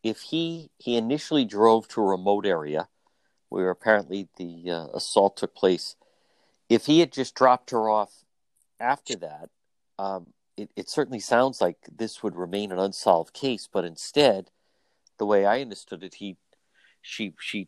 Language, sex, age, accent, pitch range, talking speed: English, male, 50-69, American, 95-125 Hz, 160 wpm